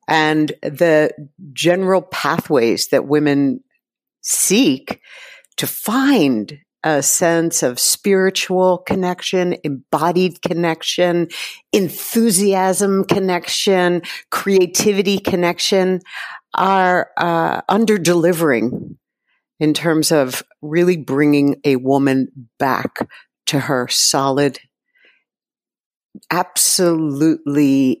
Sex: female